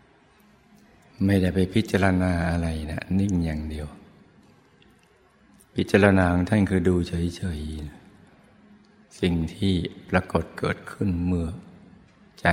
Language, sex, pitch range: Thai, male, 85-95 Hz